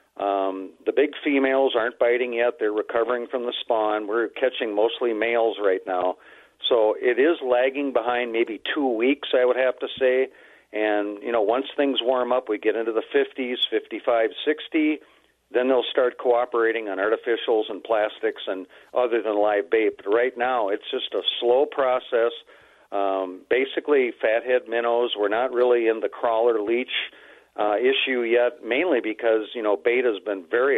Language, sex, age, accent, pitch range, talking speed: English, male, 50-69, American, 110-170 Hz, 170 wpm